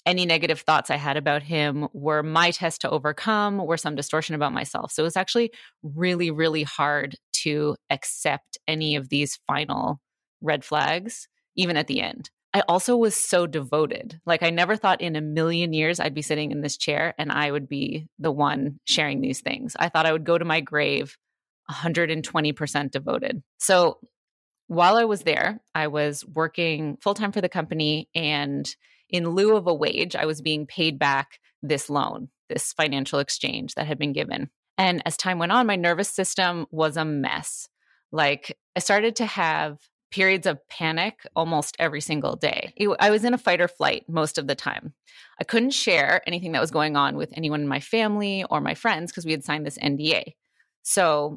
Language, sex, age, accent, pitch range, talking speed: English, female, 20-39, American, 150-180 Hz, 190 wpm